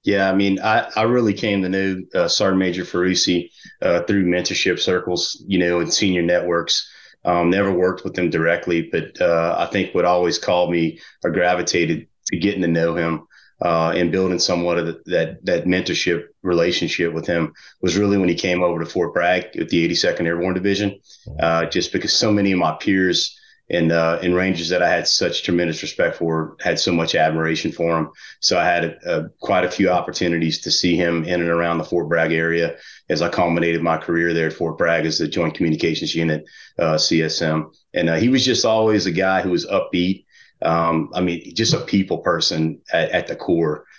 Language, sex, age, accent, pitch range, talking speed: English, male, 30-49, American, 80-90 Hz, 205 wpm